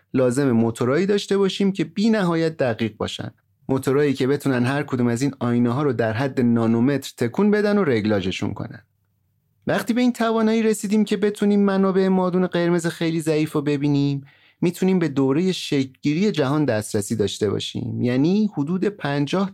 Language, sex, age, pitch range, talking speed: Persian, male, 30-49, 120-185 Hz, 155 wpm